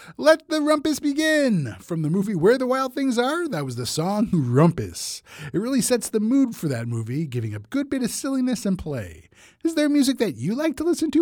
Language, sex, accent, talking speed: English, male, American, 225 wpm